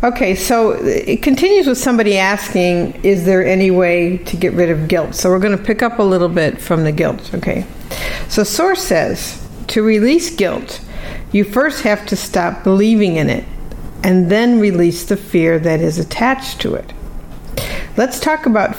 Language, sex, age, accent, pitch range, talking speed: English, female, 60-79, American, 170-210 Hz, 175 wpm